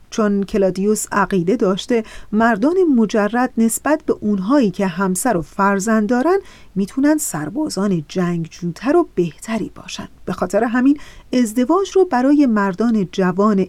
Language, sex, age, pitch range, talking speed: Persian, female, 40-59, 195-270 Hz, 125 wpm